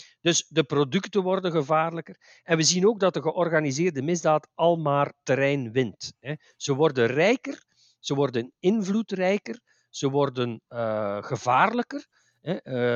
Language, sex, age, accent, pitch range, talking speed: Dutch, male, 50-69, Dutch, 125-170 Hz, 120 wpm